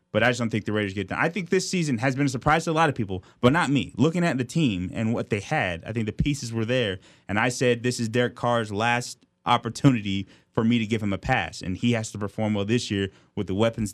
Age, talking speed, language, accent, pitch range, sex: 20-39, 285 wpm, English, American, 105-130 Hz, male